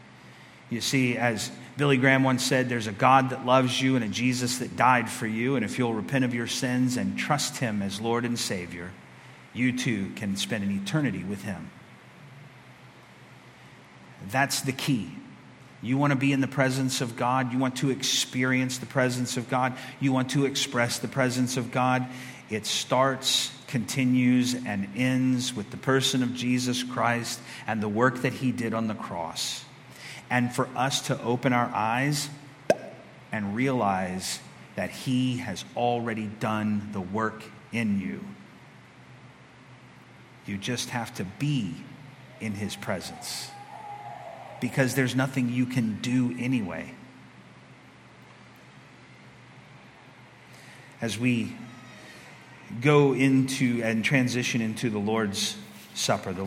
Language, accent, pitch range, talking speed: English, American, 110-130 Hz, 140 wpm